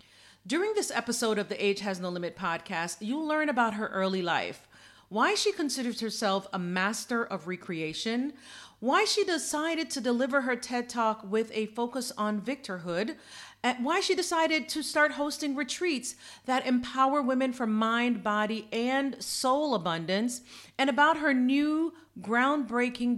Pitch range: 200-260 Hz